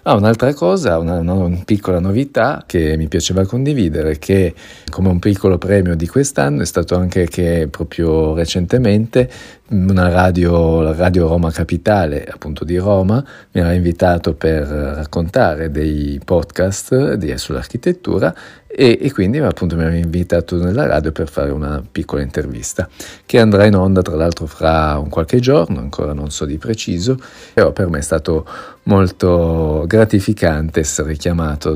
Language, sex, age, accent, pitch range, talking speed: Italian, male, 40-59, native, 80-100 Hz, 155 wpm